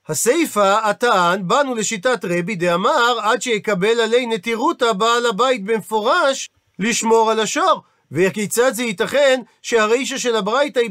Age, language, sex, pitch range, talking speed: 40-59, Hebrew, male, 200-260 Hz, 125 wpm